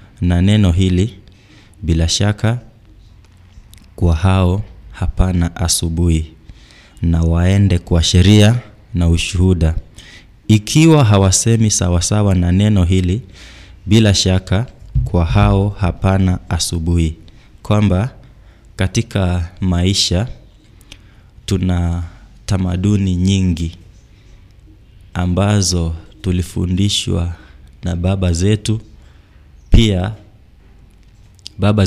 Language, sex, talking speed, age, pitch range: English, male, 75 wpm, 20-39, 90-105 Hz